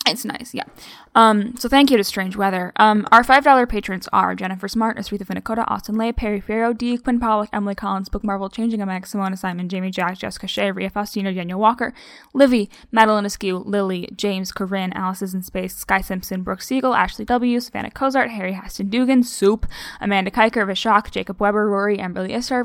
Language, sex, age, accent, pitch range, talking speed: English, female, 10-29, American, 190-235 Hz, 190 wpm